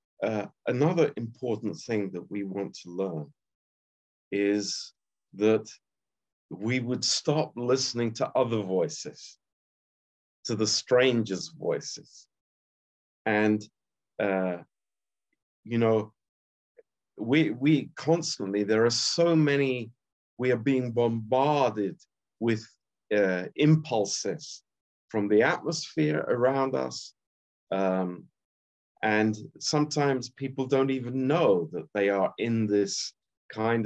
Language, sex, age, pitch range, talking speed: Romanian, male, 50-69, 95-130 Hz, 105 wpm